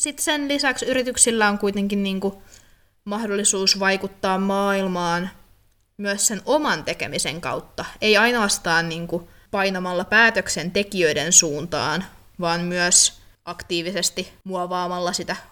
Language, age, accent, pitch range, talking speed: Finnish, 20-39, native, 170-195 Hz, 95 wpm